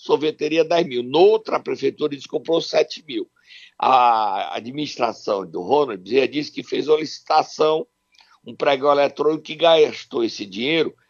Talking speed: 140 wpm